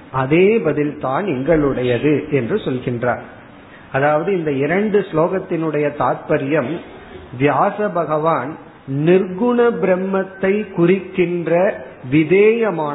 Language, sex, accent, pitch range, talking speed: Tamil, male, native, 145-190 Hz, 45 wpm